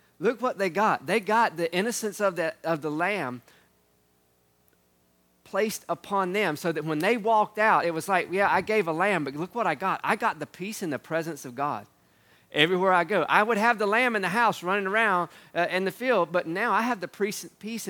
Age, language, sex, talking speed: 40-59, English, male, 220 wpm